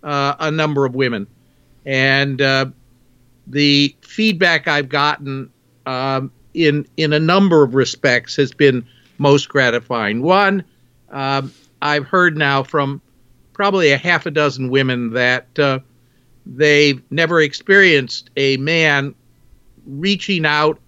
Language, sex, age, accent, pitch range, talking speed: English, male, 50-69, American, 130-150 Hz, 125 wpm